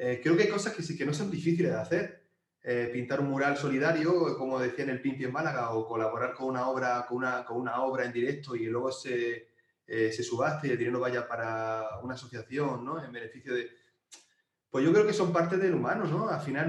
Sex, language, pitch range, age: male, Spanish, 120-155 Hz, 30-49